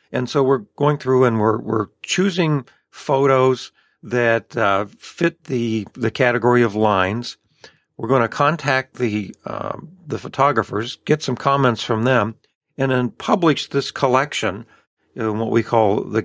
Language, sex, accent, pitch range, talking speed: English, male, American, 110-145 Hz, 150 wpm